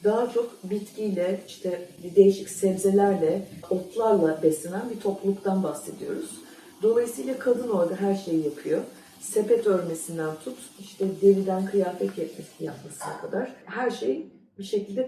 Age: 40-59